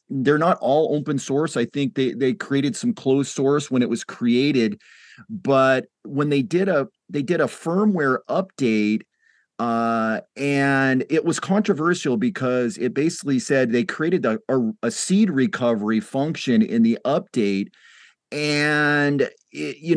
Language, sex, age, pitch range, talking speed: English, male, 40-59, 120-155 Hz, 145 wpm